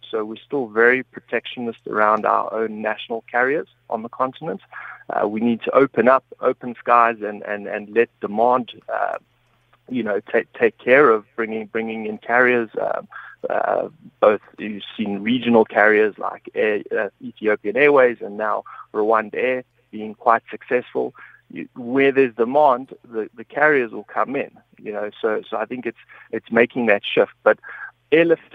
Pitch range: 110-130 Hz